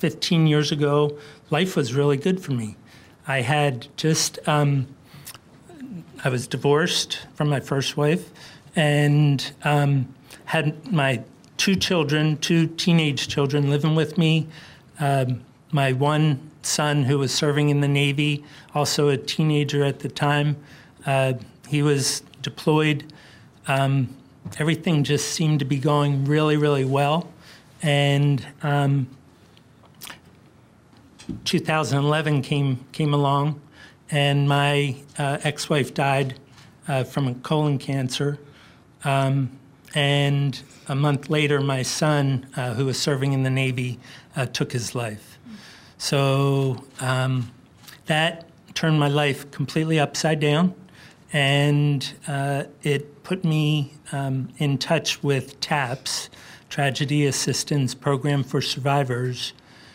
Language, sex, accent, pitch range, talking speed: English, male, American, 135-150 Hz, 120 wpm